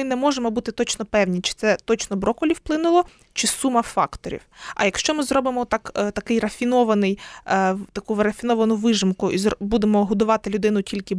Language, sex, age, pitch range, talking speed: Ukrainian, female, 20-39, 200-245 Hz, 155 wpm